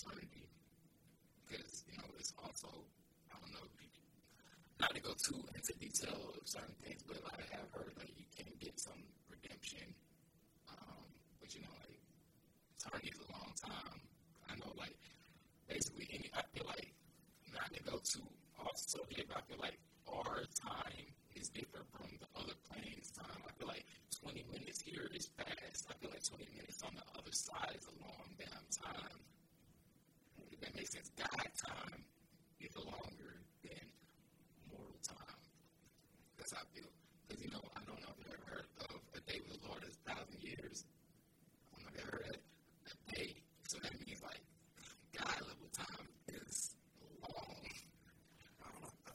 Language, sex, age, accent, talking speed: English, male, 40-59, American, 170 wpm